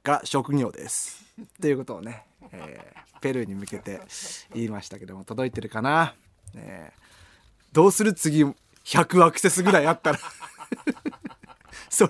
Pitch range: 130-215 Hz